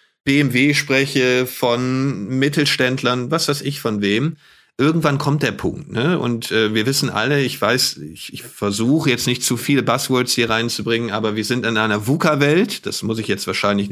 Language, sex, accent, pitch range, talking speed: German, male, German, 120-145 Hz, 180 wpm